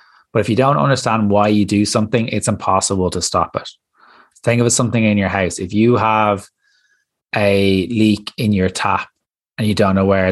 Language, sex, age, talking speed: English, male, 20-39, 205 wpm